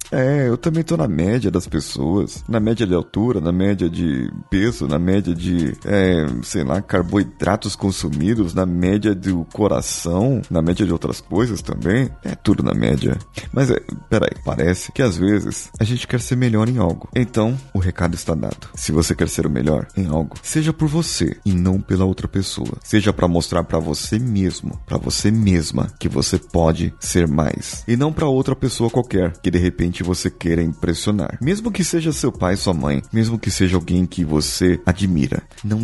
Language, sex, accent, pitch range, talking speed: Portuguese, male, Brazilian, 85-110 Hz, 190 wpm